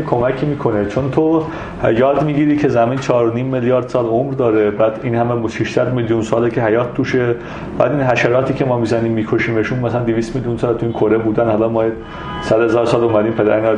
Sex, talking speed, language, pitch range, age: male, 200 wpm, Persian, 110-150 Hz, 40-59